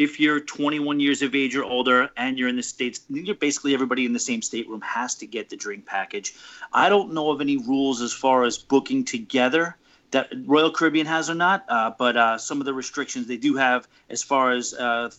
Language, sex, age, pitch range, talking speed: English, male, 30-49, 120-160 Hz, 220 wpm